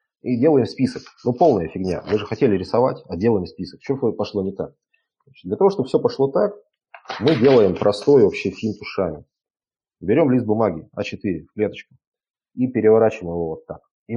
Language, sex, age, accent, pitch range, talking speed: Russian, male, 30-49, native, 90-120 Hz, 180 wpm